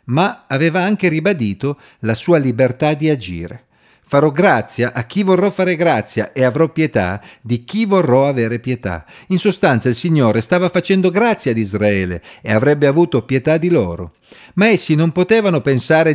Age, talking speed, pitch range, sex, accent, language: 50-69, 165 wpm, 110-160 Hz, male, native, Italian